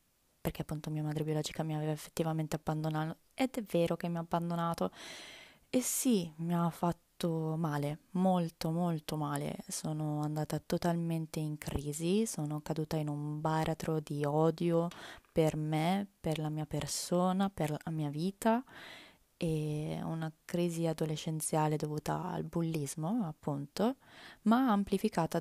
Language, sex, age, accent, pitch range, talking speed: Italian, female, 20-39, native, 150-185 Hz, 135 wpm